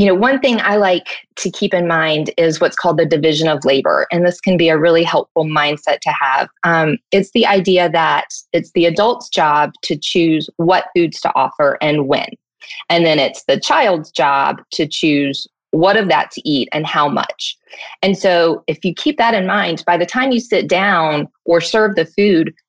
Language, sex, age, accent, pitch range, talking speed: English, female, 20-39, American, 160-205 Hz, 205 wpm